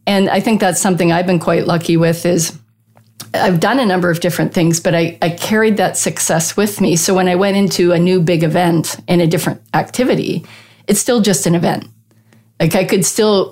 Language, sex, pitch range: English, female, 160-185 Hz